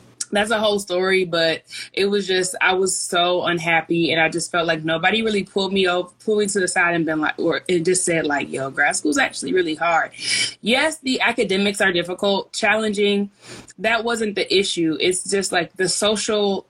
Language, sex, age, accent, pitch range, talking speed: English, female, 20-39, American, 170-200 Hz, 205 wpm